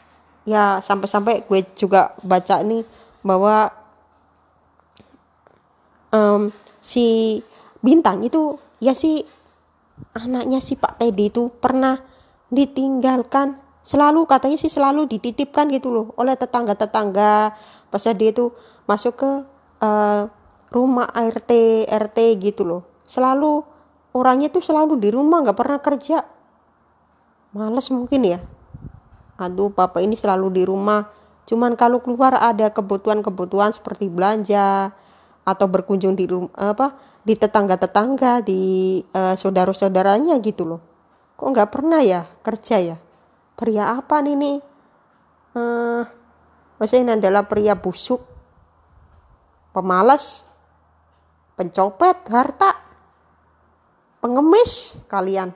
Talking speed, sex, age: 105 wpm, female, 20-39